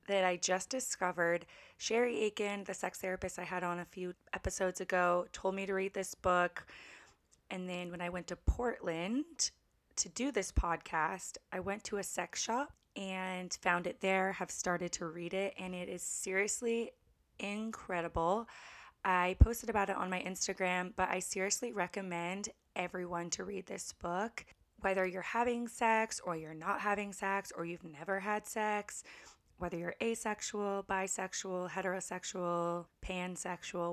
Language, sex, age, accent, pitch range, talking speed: English, female, 20-39, American, 175-210 Hz, 155 wpm